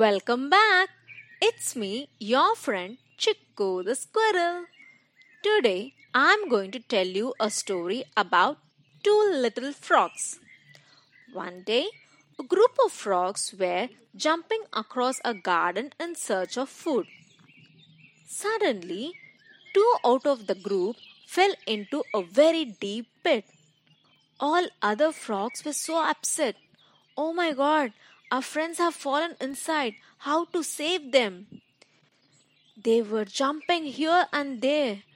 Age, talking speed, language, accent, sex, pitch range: 20-39, 125 wpm, English, Indian, female, 205-310 Hz